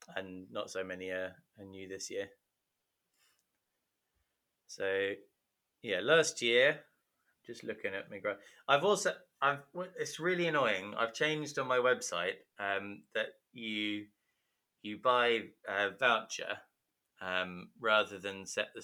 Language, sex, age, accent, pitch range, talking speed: English, male, 20-39, British, 100-115 Hz, 130 wpm